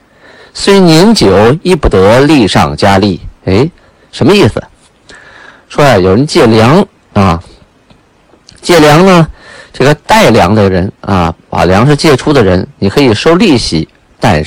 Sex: male